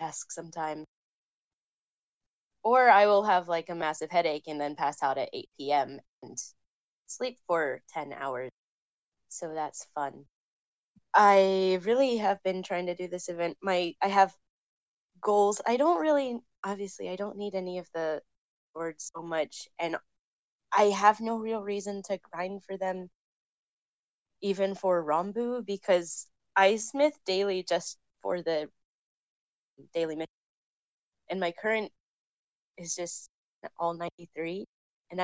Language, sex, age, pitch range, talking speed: English, female, 10-29, 165-200 Hz, 135 wpm